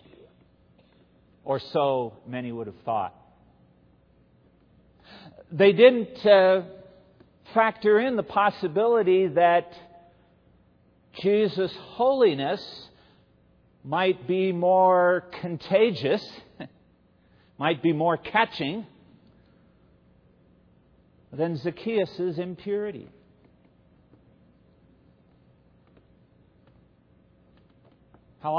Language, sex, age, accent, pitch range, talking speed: English, male, 50-69, American, 115-180 Hz, 60 wpm